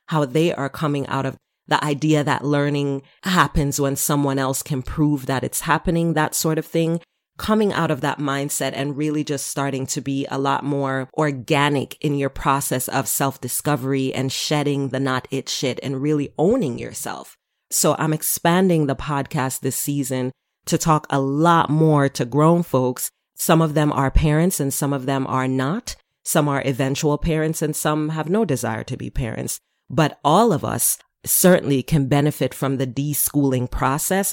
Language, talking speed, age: English, 180 wpm, 30-49